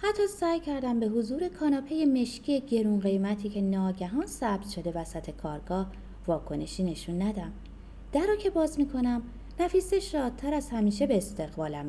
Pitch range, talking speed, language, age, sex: 170-280 Hz, 150 wpm, Persian, 20-39, female